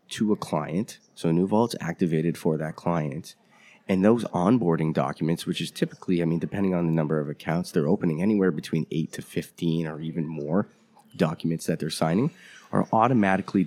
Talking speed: 185 wpm